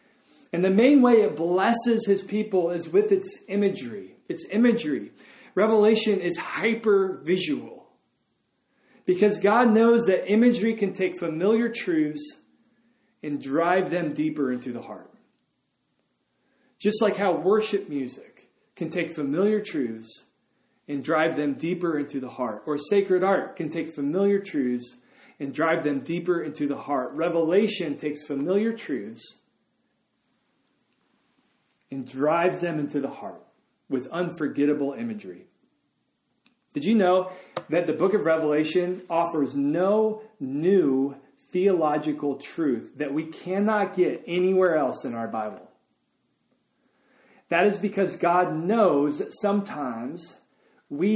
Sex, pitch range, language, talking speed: male, 150-210 Hz, English, 125 wpm